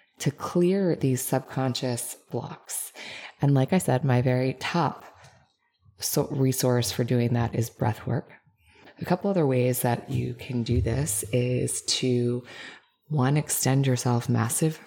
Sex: female